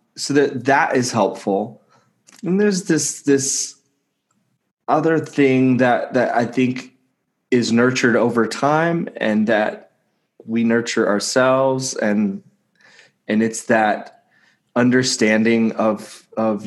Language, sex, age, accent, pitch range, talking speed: English, male, 20-39, American, 110-130 Hz, 110 wpm